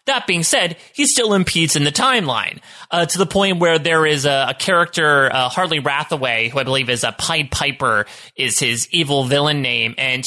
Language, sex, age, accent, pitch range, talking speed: English, male, 30-49, American, 130-175 Hz, 210 wpm